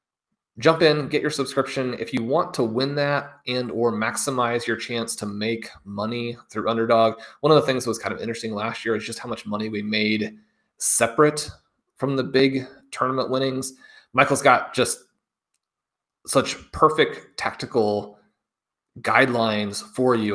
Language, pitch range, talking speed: English, 105-130 Hz, 160 wpm